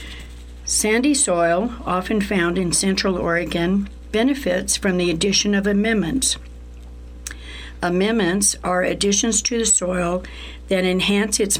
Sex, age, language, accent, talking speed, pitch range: female, 60-79, English, American, 115 wpm, 175-205 Hz